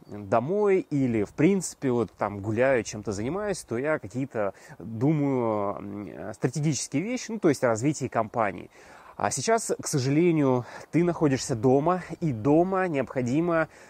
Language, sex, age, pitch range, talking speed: Russian, male, 20-39, 115-155 Hz, 130 wpm